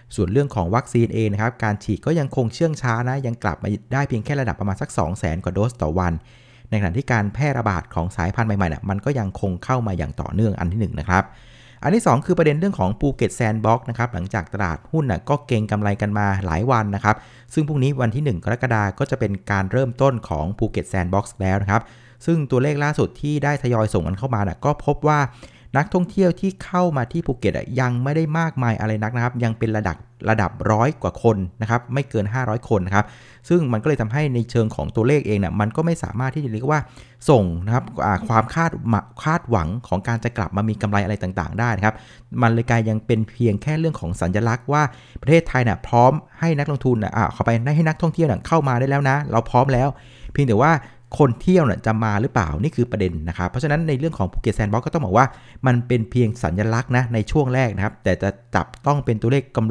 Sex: male